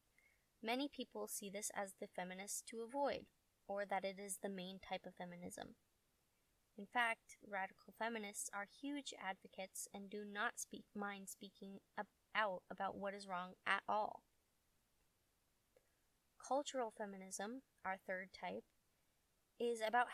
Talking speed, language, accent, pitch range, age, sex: 135 wpm, English, American, 195-225 Hz, 20-39, female